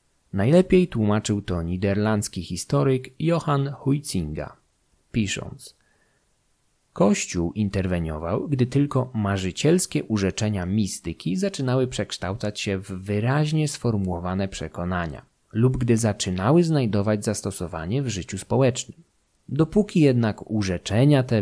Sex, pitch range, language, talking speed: male, 95-135 Hz, Polish, 95 wpm